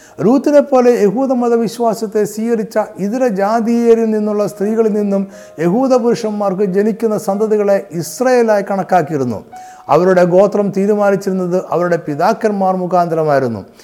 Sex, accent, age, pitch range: male, native, 60-79, 170-220 Hz